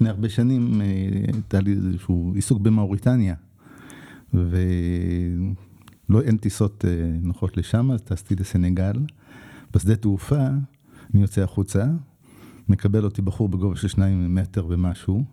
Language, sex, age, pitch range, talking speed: Hebrew, male, 50-69, 100-140 Hz, 115 wpm